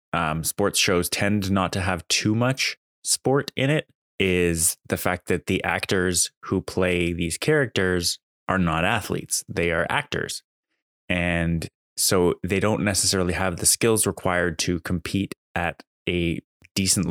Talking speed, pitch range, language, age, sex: 145 wpm, 90-110 Hz, English, 20-39, male